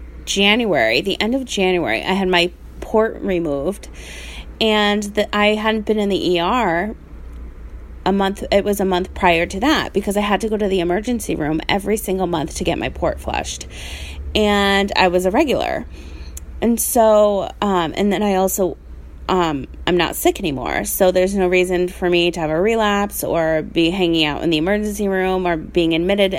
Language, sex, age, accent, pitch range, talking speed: English, female, 20-39, American, 165-210 Hz, 185 wpm